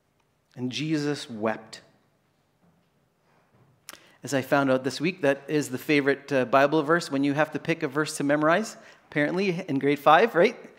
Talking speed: 165 wpm